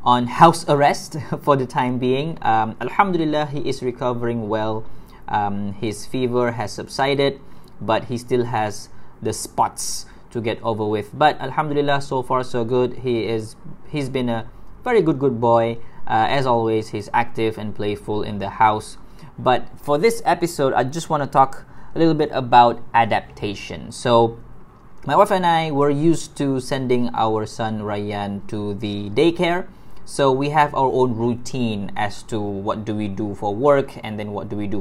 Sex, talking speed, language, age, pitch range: male, 175 wpm, Malay, 20-39, 110-140 Hz